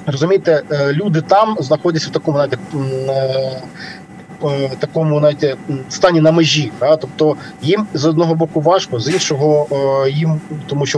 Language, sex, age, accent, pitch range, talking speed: Ukrainian, male, 20-39, native, 135-165 Hz, 140 wpm